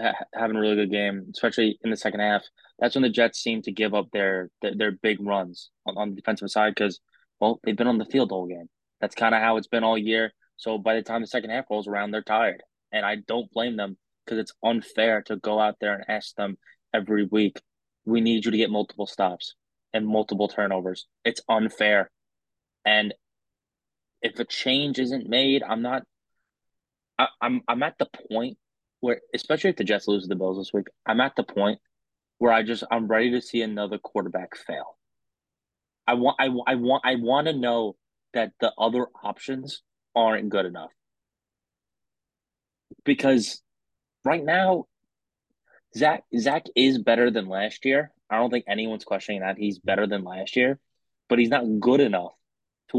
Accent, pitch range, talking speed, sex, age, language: American, 105-120 Hz, 190 wpm, male, 20-39, English